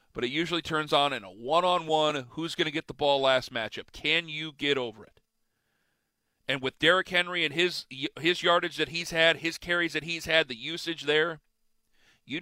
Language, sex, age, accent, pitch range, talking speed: English, male, 40-59, American, 135-180 Hz, 200 wpm